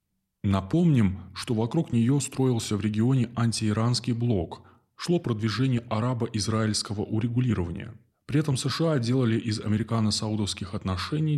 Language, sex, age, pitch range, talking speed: Russian, male, 20-39, 95-125 Hz, 105 wpm